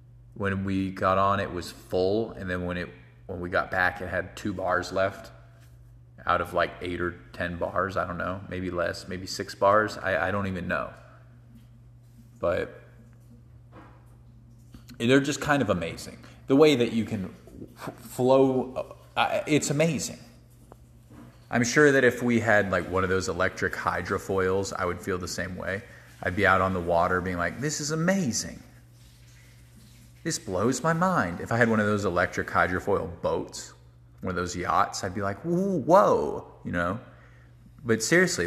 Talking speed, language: 170 wpm, English